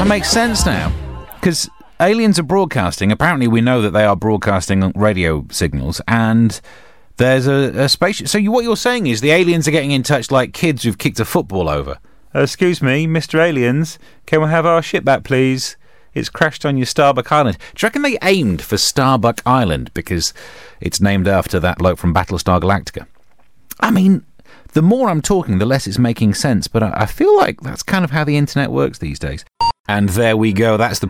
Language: English